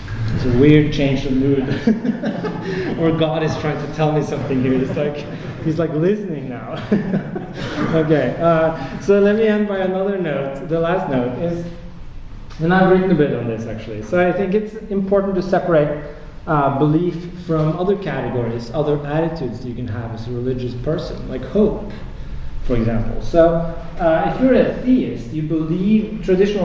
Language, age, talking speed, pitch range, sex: English, 30-49, 170 wpm, 130-180 Hz, male